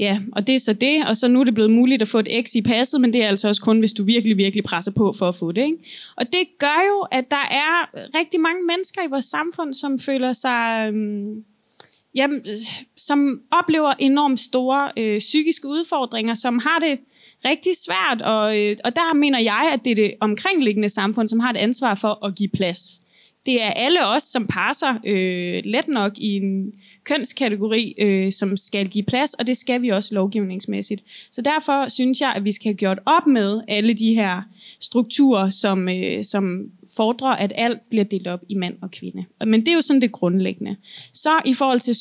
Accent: native